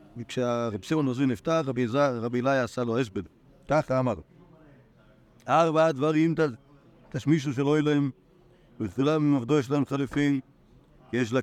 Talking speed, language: 130 wpm, Hebrew